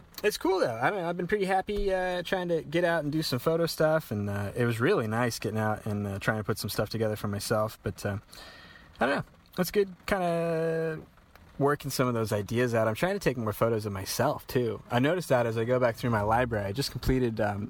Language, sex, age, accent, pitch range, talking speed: English, male, 20-39, American, 110-130 Hz, 255 wpm